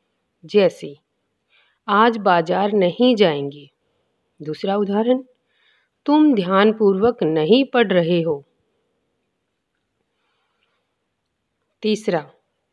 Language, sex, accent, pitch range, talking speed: Hindi, female, native, 170-230 Hz, 65 wpm